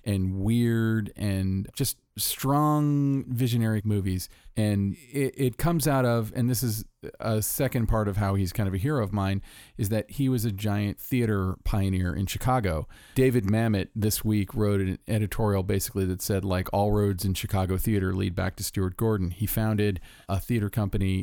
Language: English